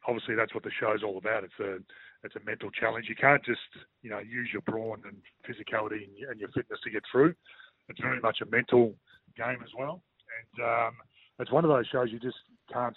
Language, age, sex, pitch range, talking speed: English, 40-59, male, 110-135 Hz, 225 wpm